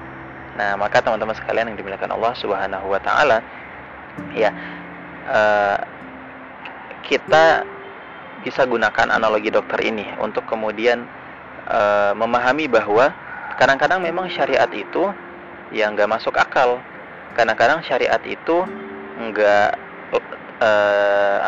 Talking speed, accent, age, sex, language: 100 wpm, native, 20-39, male, Indonesian